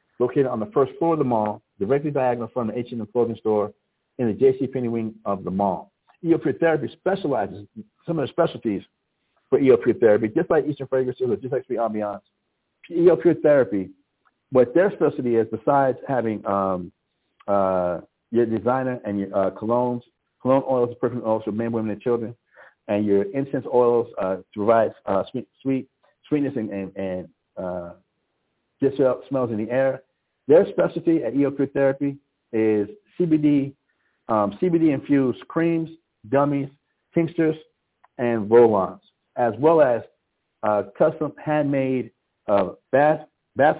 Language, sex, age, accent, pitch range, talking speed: English, male, 50-69, American, 105-140 Hz, 160 wpm